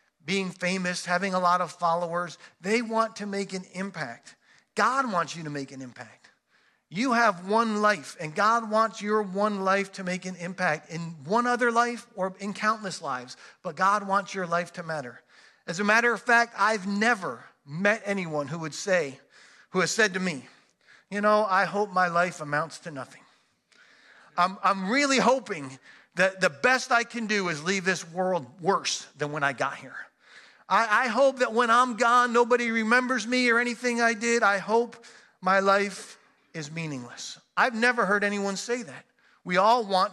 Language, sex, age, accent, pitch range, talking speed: English, male, 40-59, American, 175-225 Hz, 185 wpm